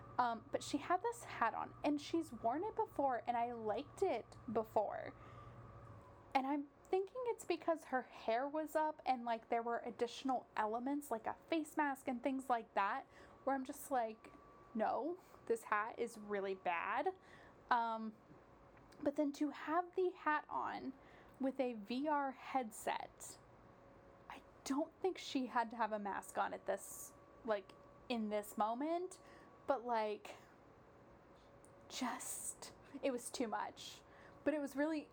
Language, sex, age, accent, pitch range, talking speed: English, female, 10-29, American, 215-295 Hz, 150 wpm